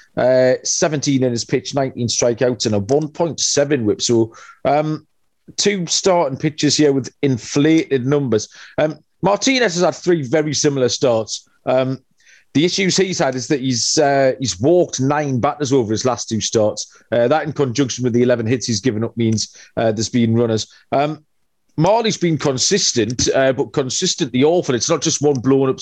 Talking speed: 175 wpm